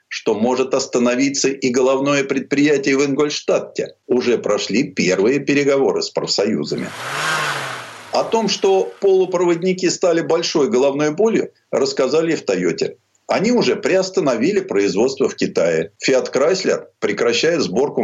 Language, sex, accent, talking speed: Russian, male, native, 120 wpm